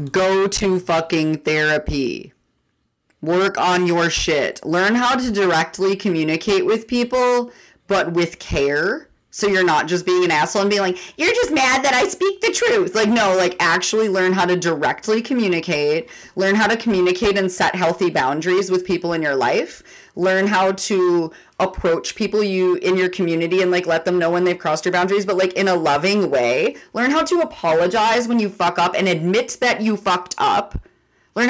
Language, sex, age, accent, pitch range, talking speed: English, female, 30-49, American, 170-215 Hz, 185 wpm